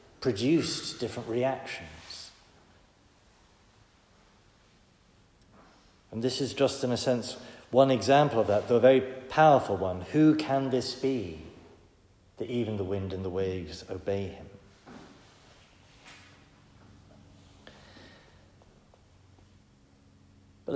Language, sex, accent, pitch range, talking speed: English, male, British, 90-130 Hz, 95 wpm